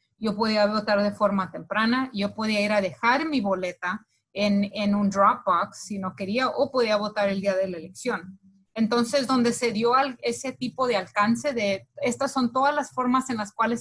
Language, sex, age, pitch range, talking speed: English, female, 30-49, 195-235 Hz, 205 wpm